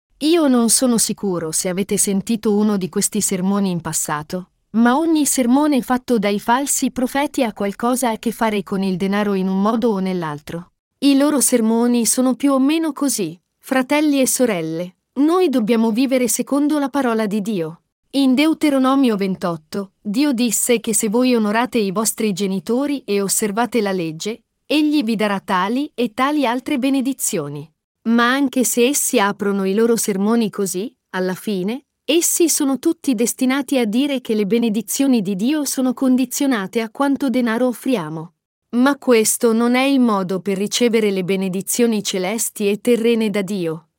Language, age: Italian, 40-59